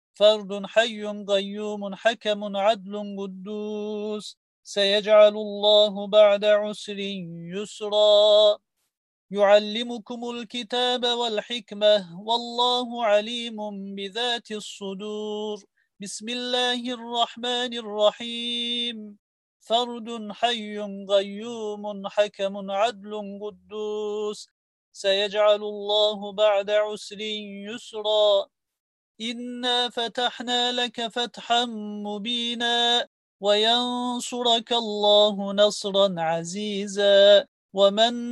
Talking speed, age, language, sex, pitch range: 65 wpm, 40-59, Turkish, male, 200-225 Hz